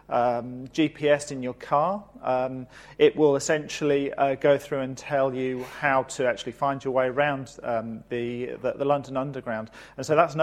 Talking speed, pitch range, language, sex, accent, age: 185 wpm, 130-160 Hz, English, male, British, 40-59